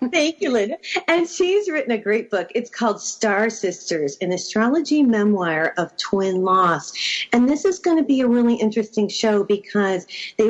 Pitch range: 180-245 Hz